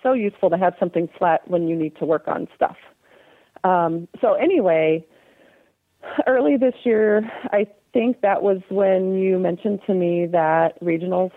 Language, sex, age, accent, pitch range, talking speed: English, female, 40-59, American, 175-205 Hz, 160 wpm